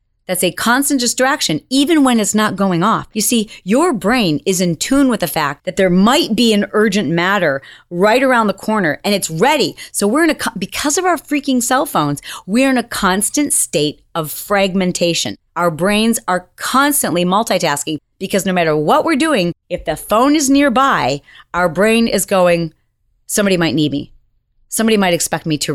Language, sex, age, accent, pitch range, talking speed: English, female, 30-49, American, 170-230 Hz, 185 wpm